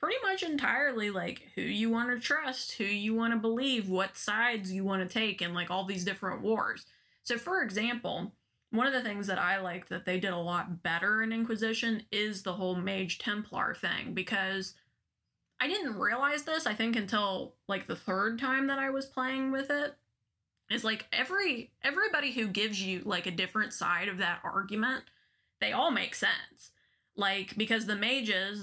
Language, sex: English, female